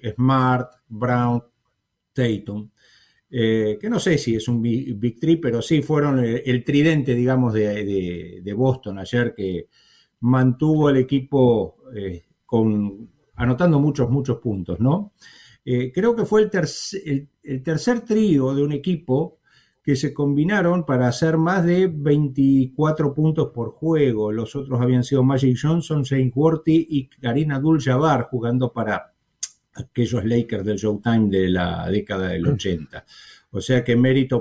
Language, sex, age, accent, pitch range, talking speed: English, male, 50-69, Argentinian, 110-145 Hz, 150 wpm